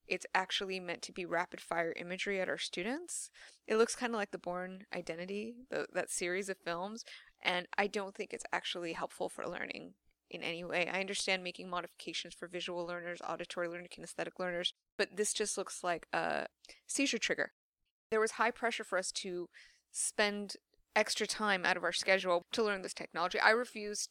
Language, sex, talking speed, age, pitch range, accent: English, female, 185 wpm, 20-39, 180-210 Hz, American